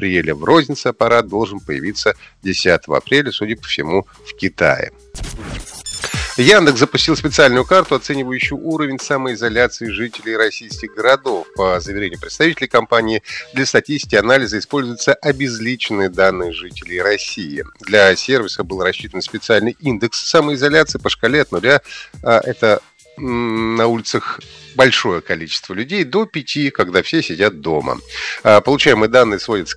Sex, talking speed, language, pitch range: male, 125 wpm, Russian, 105-145 Hz